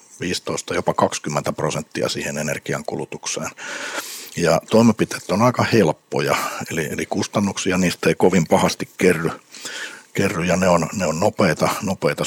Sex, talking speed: male, 120 wpm